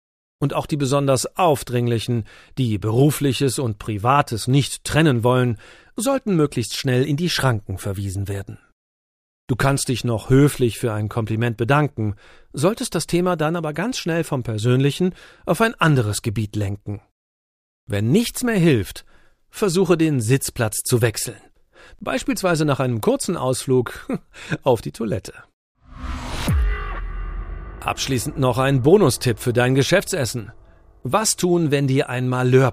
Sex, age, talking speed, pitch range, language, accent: male, 40-59, 135 wpm, 120-155 Hz, German, German